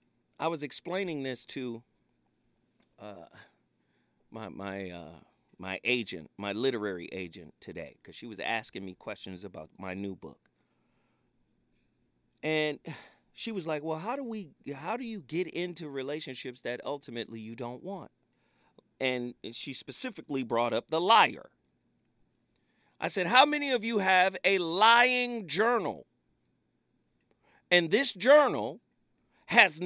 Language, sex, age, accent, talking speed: English, male, 40-59, American, 130 wpm